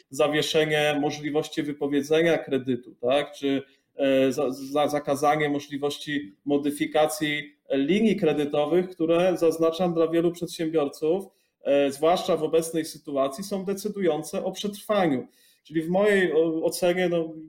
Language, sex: Polish, male